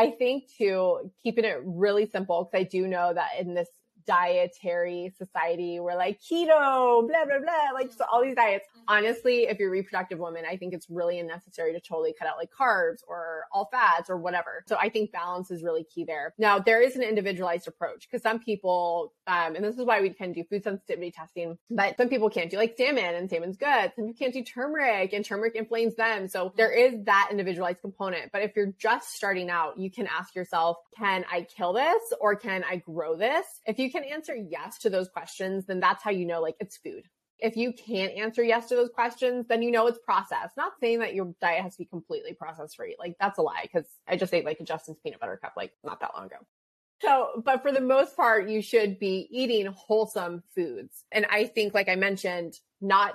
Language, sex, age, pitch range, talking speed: English, female, 20-39, 175-230 Hz, 225 wpm